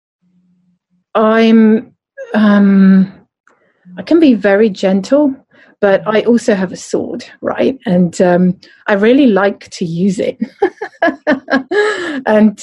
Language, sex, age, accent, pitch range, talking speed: English, female, 40-59, British, 190-255 Hz, 110 wpm